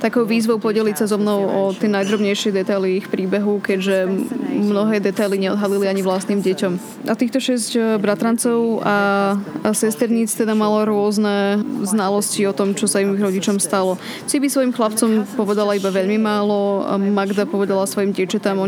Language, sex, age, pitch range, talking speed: Slovak, female, 20-39, 195-220 Hz, 165 wpm